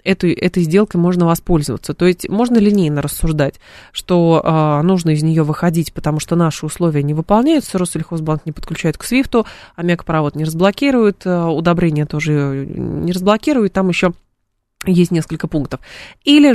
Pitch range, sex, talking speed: 160-190 Hz, female, 145 wpm